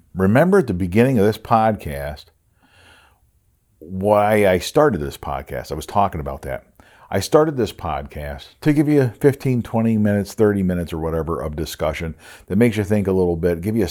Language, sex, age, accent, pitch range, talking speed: English, male, 50-69, American, 80-100 Hz, 180 wpm